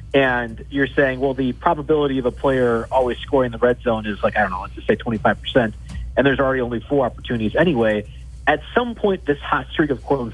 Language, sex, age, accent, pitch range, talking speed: English, male, 40-59, American, 115-145 Hz, 220 wpm